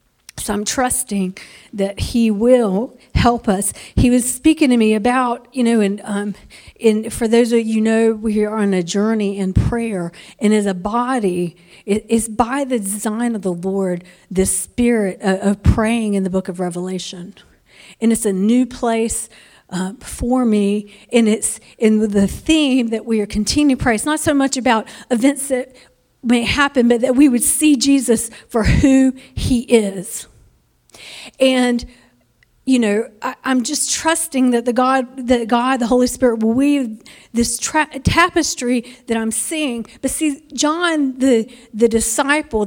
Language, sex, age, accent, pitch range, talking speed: English, female, 50-69, American, 215-265 Hz, 170 wpm